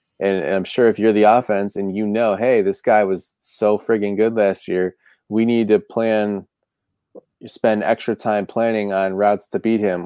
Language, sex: English, male